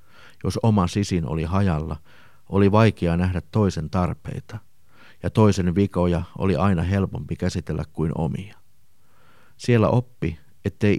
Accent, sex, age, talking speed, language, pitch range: native, male, 50-69, 120 wpm, Finnish, 85-105 Hz